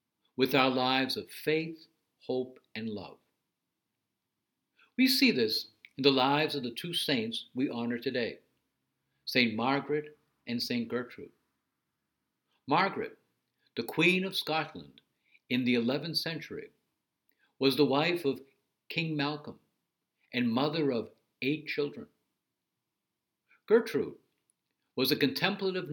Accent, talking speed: American, 115 wpm